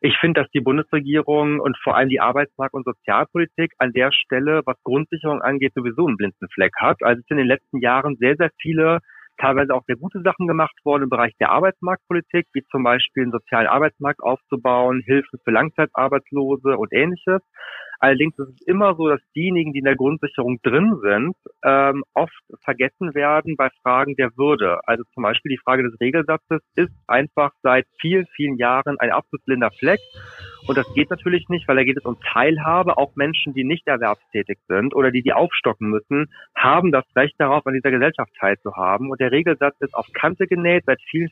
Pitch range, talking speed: 130-155 Hz, 190 wpm